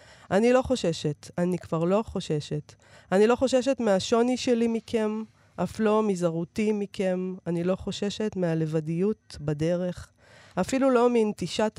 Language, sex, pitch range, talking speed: Hebrew, female, 165-210 Hz, 125 wpm